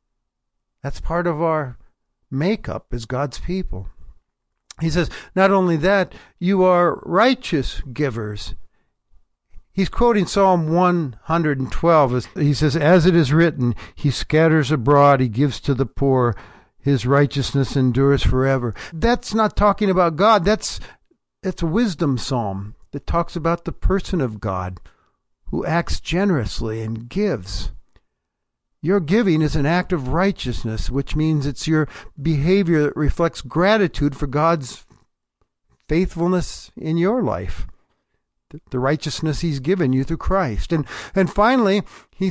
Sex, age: male, 60-79